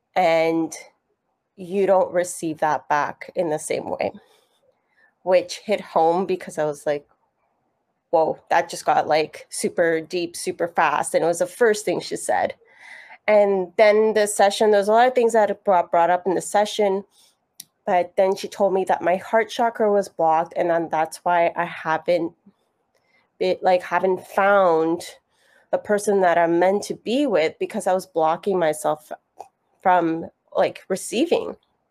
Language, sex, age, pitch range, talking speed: English, female, 20-39, 175-220 Hz, 165 wpm